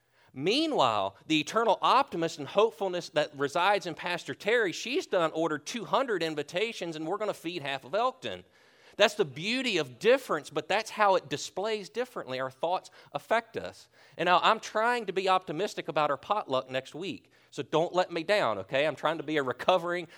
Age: 40-59